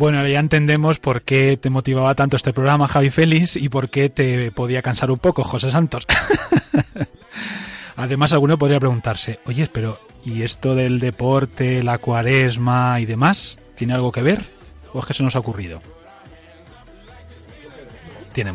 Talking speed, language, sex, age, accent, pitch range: 155 wpm, Spanish, male, 30-49, Spanish, 120-150 Hz